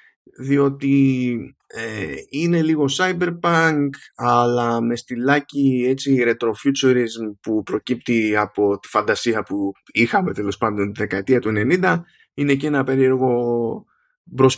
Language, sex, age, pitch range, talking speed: Greek, male, 20-39, 110-150 Hz, 115 wpm